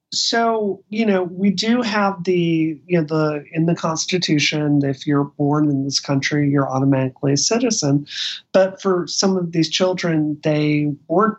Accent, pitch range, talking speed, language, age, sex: American, 145-185 Hz, 165 wpm, English, 40-59, male